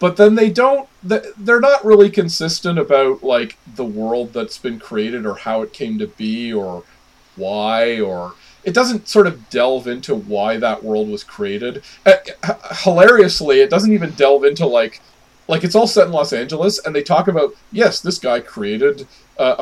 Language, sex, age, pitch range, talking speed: English, male, 40-59, 140-210 Hz, 175 wpm